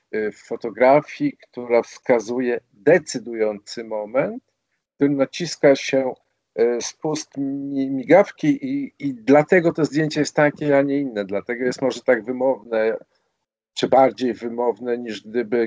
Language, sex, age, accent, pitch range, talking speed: Polish, male, 50-69, native, 110-150 Hz, 125 wpm